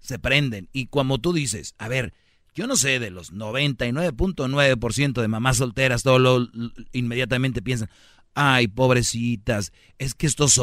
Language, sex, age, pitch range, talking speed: Spanish, male, 40-59, 115-145 Hz, 140 wpm